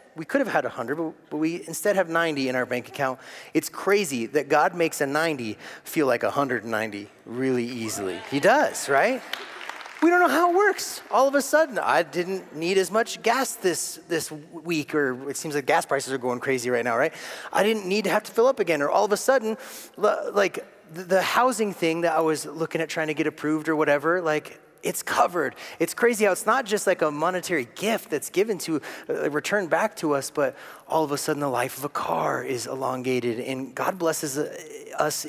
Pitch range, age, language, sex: 130-190 Hz, 30-49, English, male